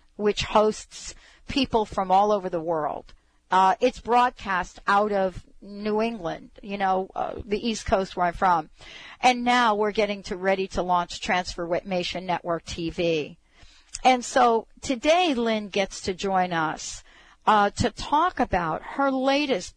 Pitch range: 180-230 Hz